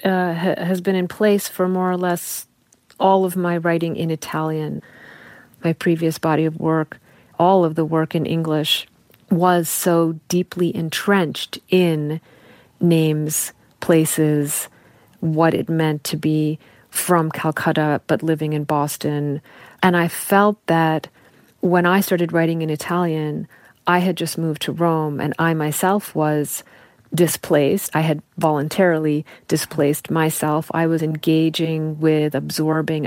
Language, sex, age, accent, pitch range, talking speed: English, female, 40-59, American, 155-185 Hz, 135 wpm